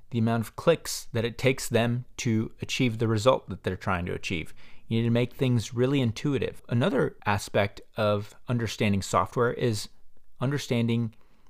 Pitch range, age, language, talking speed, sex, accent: 105-125 Hz, 30-49, English, 160 wpm, male, American